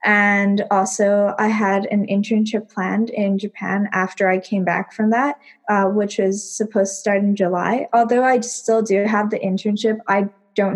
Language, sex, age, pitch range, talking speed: English, female, 10-29, 195-225 Hz, 180 wpm